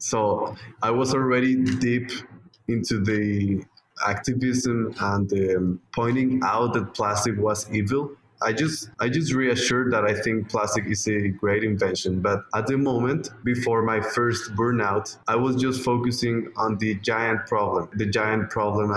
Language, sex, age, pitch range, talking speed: English, male, 20-39, 105-120 Hz, 150 wpm